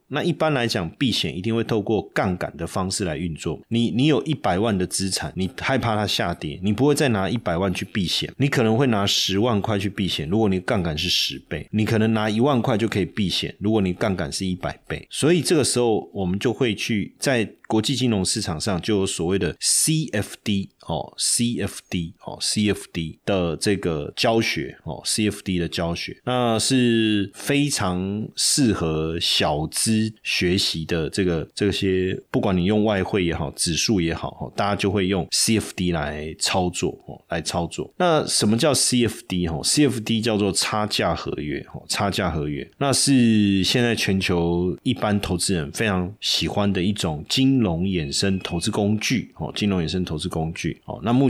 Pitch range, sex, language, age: 90-115 Hz, male, Chinese, 30-49